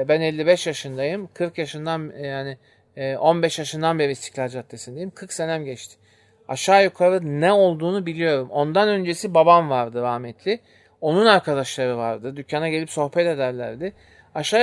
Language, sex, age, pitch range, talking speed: Turkish, male, 40-59, 130-175 Hz, 130 wpm